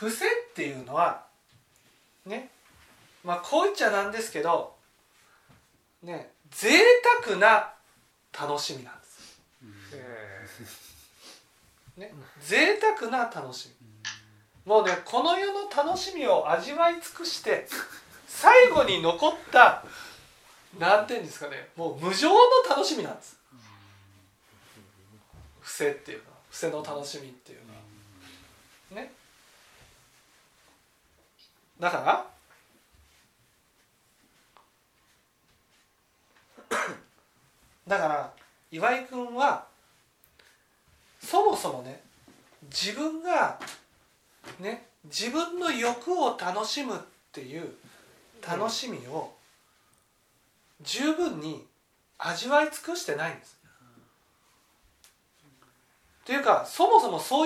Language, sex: Japanese, male